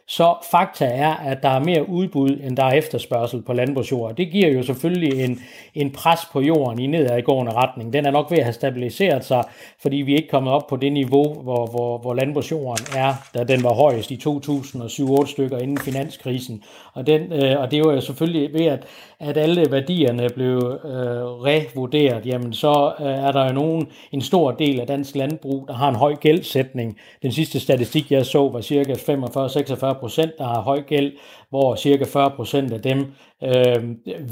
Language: Danish